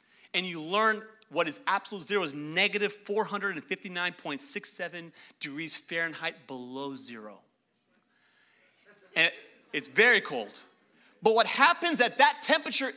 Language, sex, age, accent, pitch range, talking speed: English, male, 30-49, American, 165-230 Hz, 110 wpm